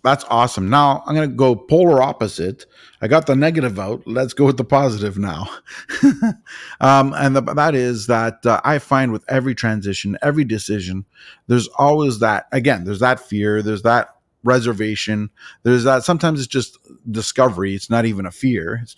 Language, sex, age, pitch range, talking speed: English, male, 30-49, 105-140 Hz, 175 wpm